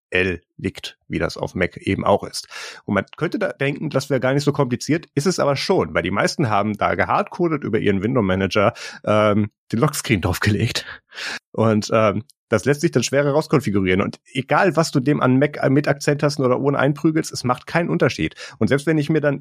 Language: German